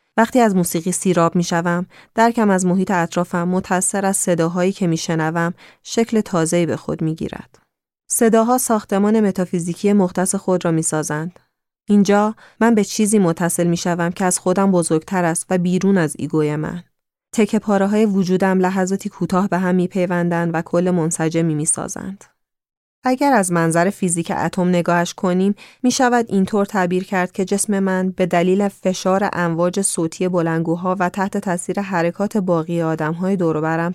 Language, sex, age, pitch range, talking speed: Persian, female, 30-49, 170-200 Hz, 145 wpm